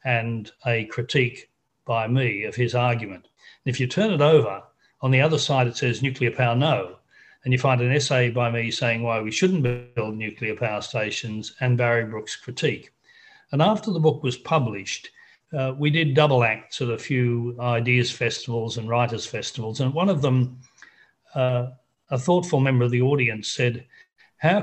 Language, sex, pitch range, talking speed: English, male, 120-140 Hz, 180 wpm